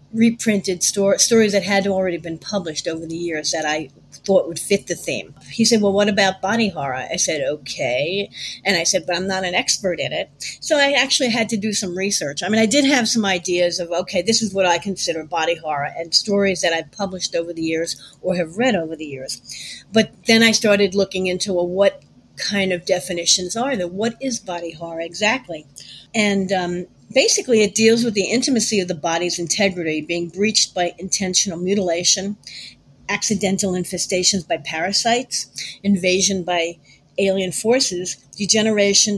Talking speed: 180 wpm